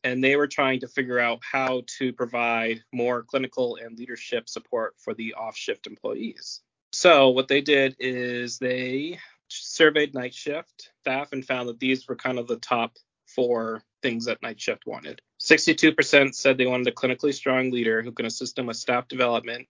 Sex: male